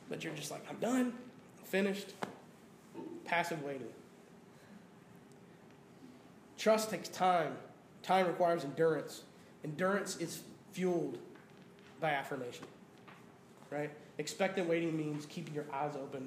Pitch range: 165-200 Hz